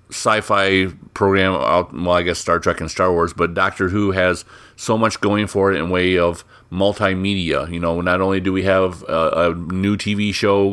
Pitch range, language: 90-105 Hz, English